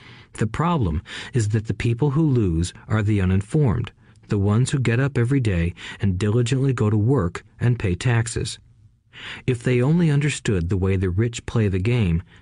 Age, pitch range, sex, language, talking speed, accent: 40-59, 100-125 Hz, male, English, 180 wpm, American